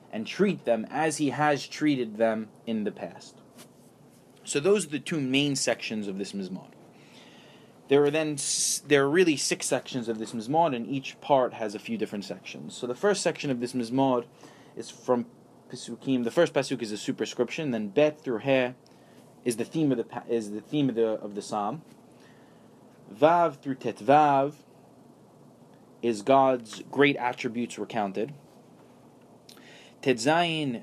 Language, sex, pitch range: English, male, 115-150 Hz